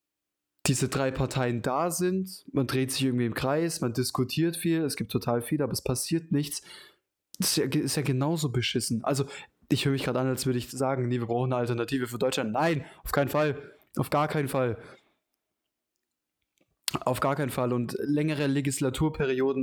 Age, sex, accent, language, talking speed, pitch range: 20-39, male, German, German, 180 wpm, 125-140 Hz